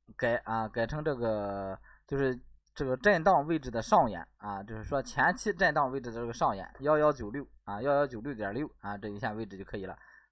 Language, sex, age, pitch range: Chinese, male, 20-39, 105-140 Hz